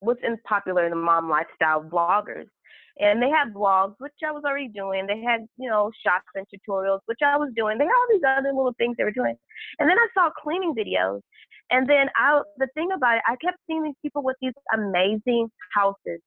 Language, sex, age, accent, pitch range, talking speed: English, female, 20-39, American, 195-275 Hz, 220 wpm